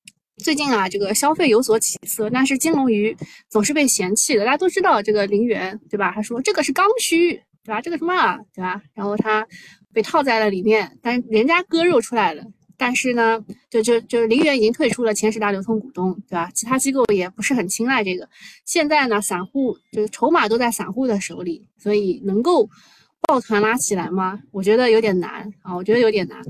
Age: 20-39